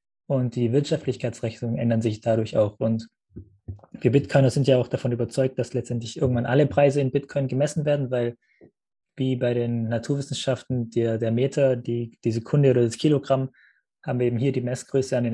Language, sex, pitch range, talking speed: German, male, 115-135 Hz, 180 wpm